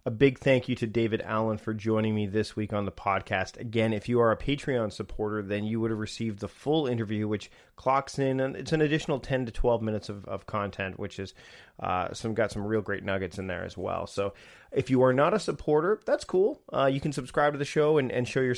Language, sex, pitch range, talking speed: English, male, 105-125 Hz, 250 wpm